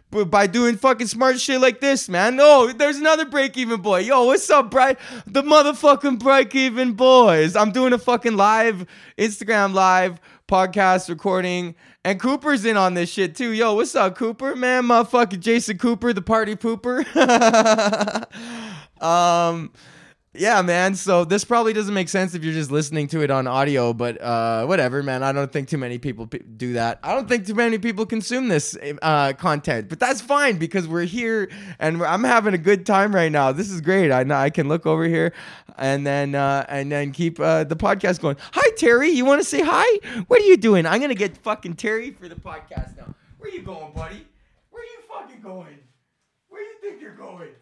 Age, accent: 20-39, American